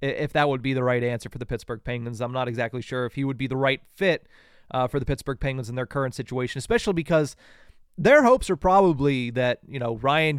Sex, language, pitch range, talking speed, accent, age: male, English, 135-175 Hz, 235 wpm, American, 30-49